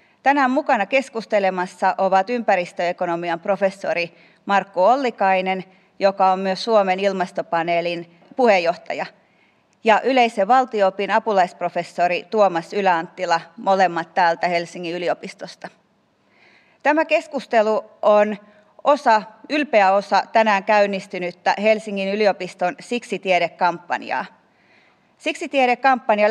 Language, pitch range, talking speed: Finnish, 190-240 Hz, 85 wpm